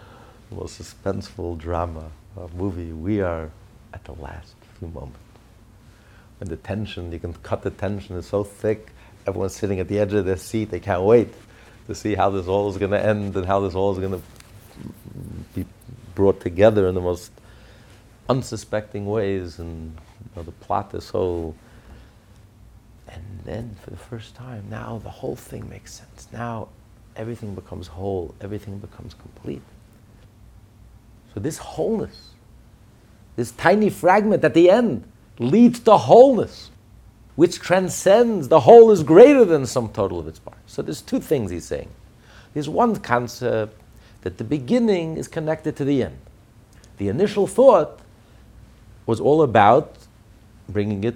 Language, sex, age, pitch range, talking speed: English, male, 50-69, 100-115 Hz, 155 wpm